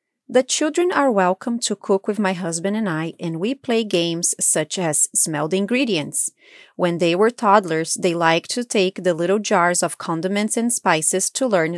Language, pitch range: English, 175-225 Hz